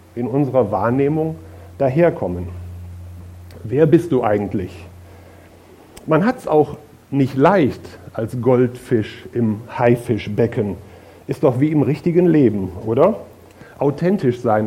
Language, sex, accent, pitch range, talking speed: German, male, German, 105-135 Hz, 110 wpm